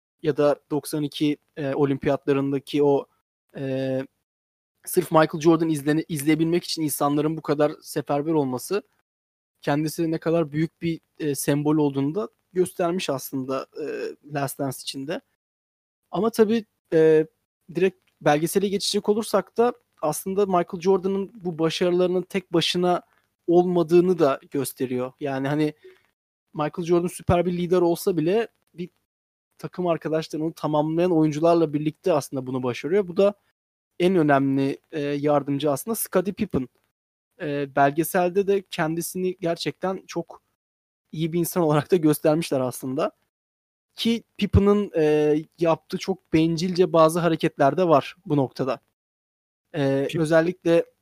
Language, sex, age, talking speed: Turkish, male, 30-49, 120 wpm